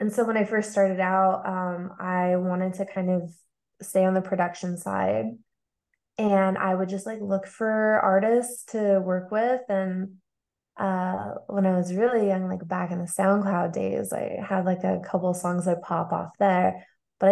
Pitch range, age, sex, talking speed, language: 185-205 Hz, 20-39, female, 185 wpm, English